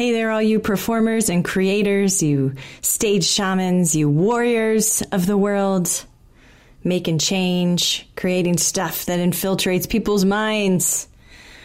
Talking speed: 120 wpm